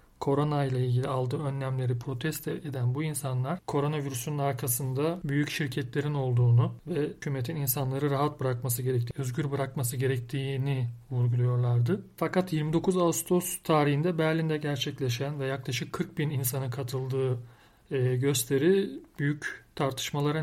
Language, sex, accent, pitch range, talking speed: Turkish, male, native, 130-155 Hz, 115 wpm